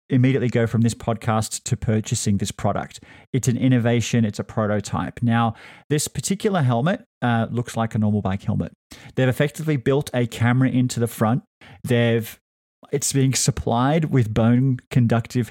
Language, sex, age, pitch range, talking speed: English, male, 30-49, 110-130 Hz, 160 wpm